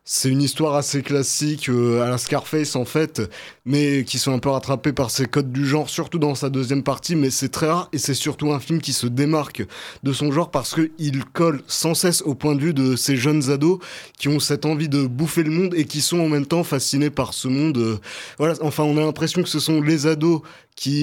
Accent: French